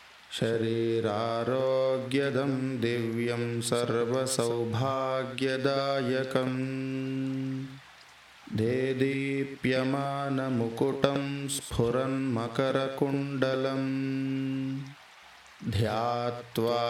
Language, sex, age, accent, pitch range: Hindi, male, 20-39, native, 120-135 Hz